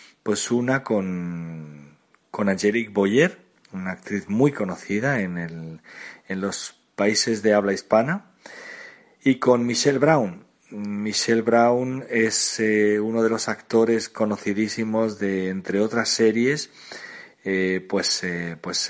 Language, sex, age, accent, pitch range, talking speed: Spanish, male, 40-59, Spanish, 95-125 Hz, 125 wpm